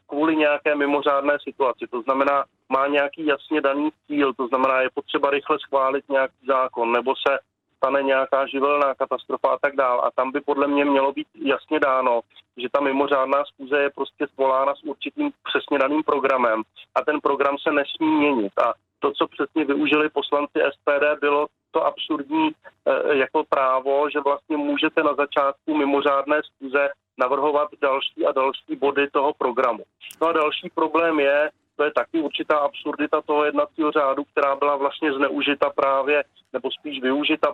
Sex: male